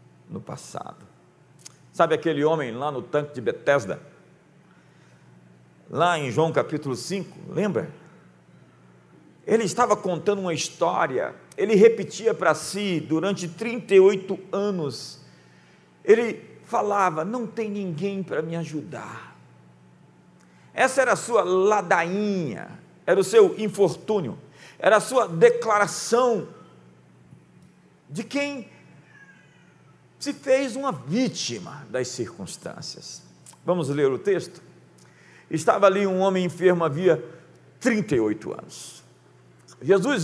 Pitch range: 155-210 Hz